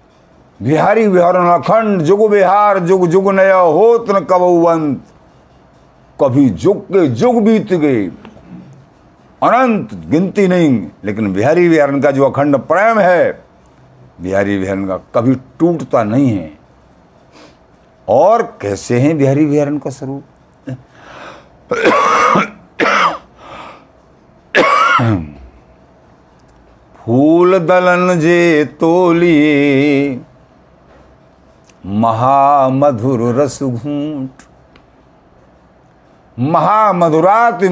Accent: native